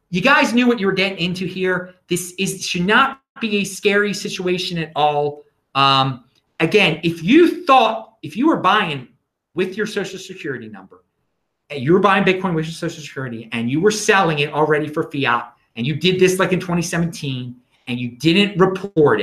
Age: 30-49